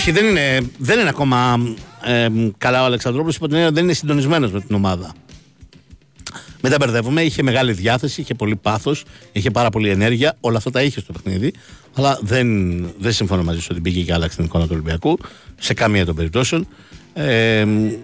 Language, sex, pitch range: Greek, male, 90-125 Hz